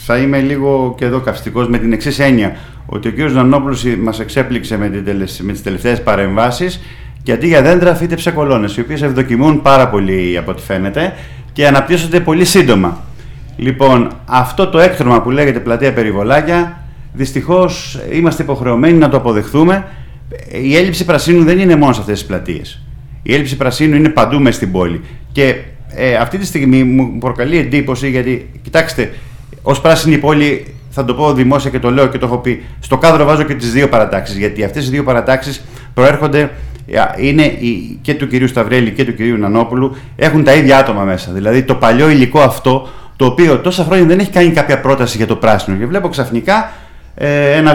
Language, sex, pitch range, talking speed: Greek, male, 120-150 Hz, 175 wpm